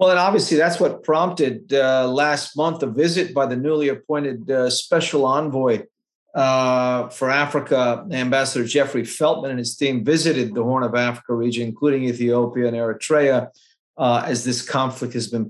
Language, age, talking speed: English, 40-59, 165 wpm